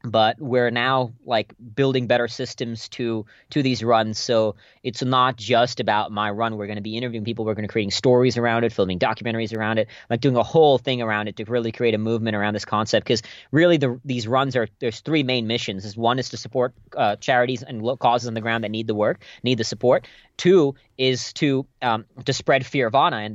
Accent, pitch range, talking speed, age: American, 110-135 Hz, 230 wpm, 30-49